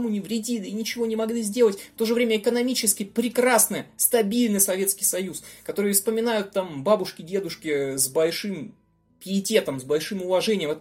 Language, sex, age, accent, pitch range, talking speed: Russian, male, 20-39, native, 155-225 Hz, 155 wpm